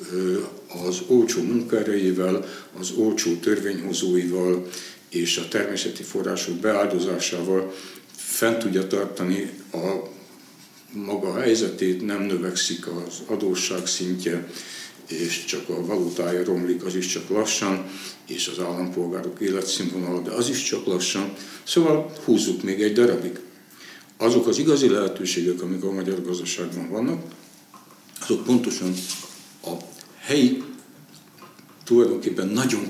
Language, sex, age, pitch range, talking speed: Hungarian, male, 60-79, 90-115 Hz, 110 wpm